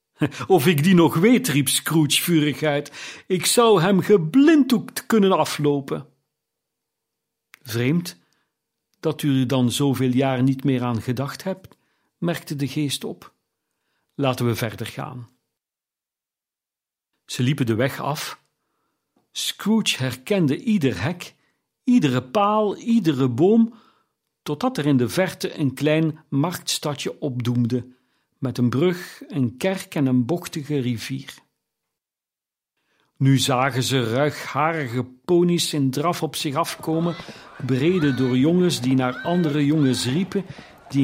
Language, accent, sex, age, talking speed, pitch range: Dutch, Dutch, male, 50-69, 125 wpm, 130-175 Hz